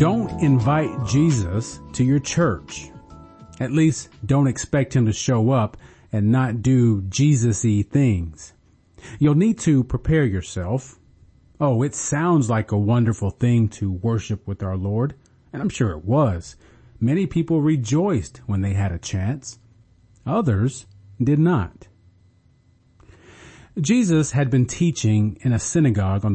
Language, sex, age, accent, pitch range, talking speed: English, male, 40-59, American, 100-145 Hz, 135 wpm